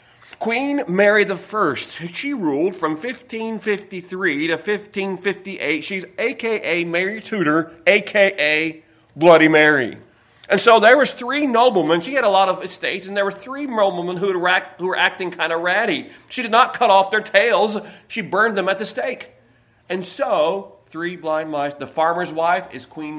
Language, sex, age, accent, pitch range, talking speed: English, male, 40-59, American, 145-200 Hz, 180 wpm